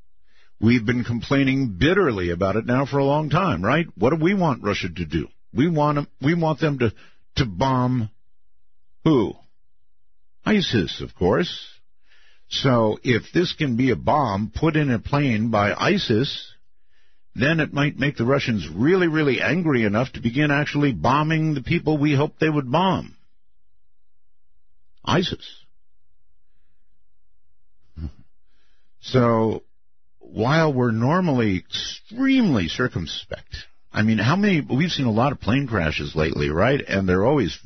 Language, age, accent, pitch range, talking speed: English, 50-69, American, 90-140 Hz, 140 wpm